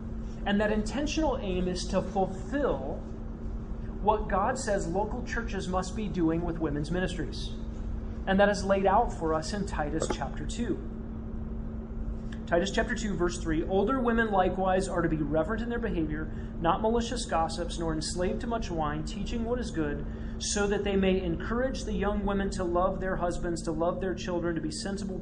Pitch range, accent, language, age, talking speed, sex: 170-205 Hz, American, English, 30-49, 180 wpm, male